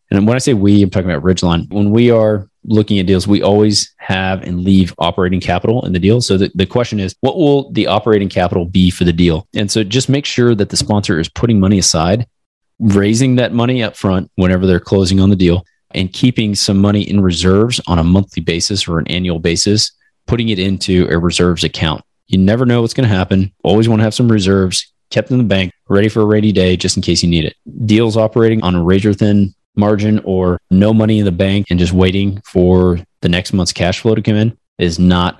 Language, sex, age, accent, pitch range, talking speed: English, male, 30-49, American, 90-110 Hz, 230 wpm